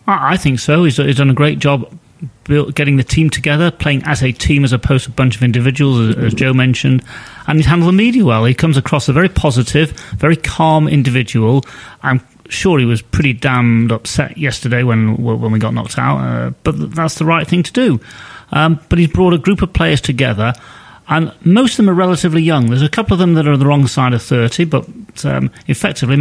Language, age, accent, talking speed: English, 30-49, British, 220 wpm